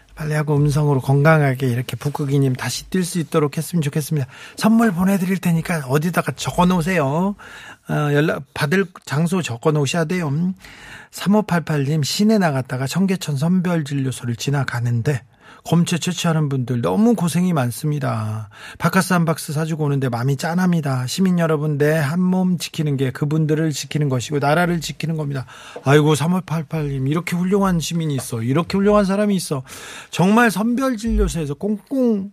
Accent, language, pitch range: native, Korean, 140-185 Hz